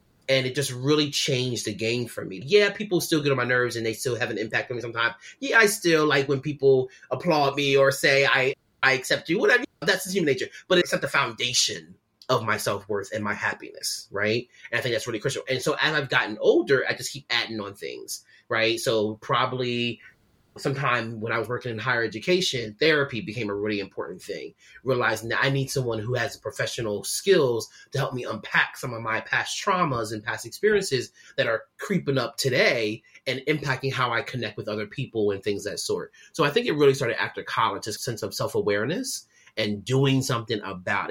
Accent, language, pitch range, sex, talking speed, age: American, English, 115-160 Hz, male, 215 wpm, 30-49